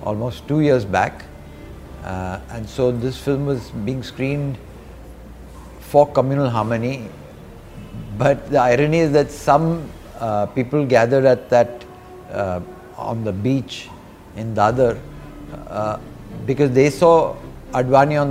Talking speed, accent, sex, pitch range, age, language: 125 wpm, native, male, 110-140 Hz, 50-69, Hindi